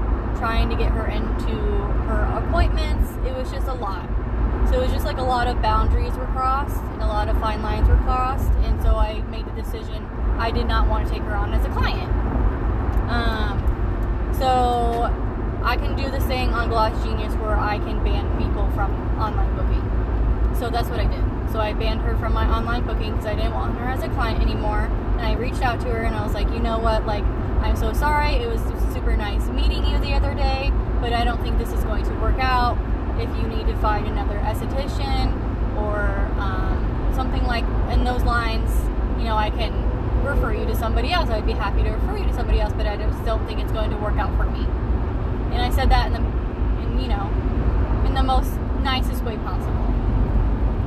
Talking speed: 215 wpm